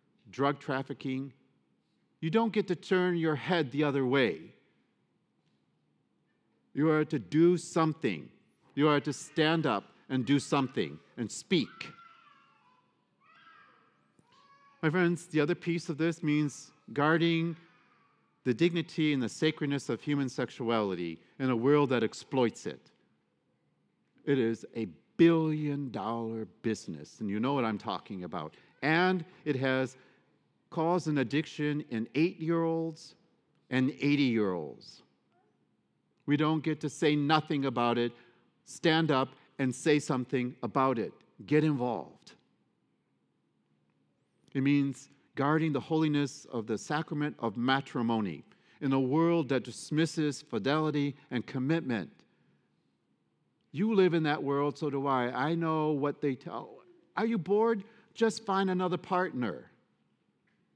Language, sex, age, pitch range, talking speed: English, male, 50-69, 130-165 Hz, 130 wpm